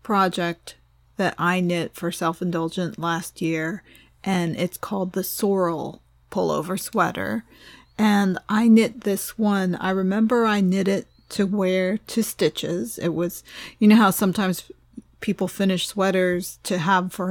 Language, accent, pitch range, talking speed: English, American, 175-205 Hz, 140 wpm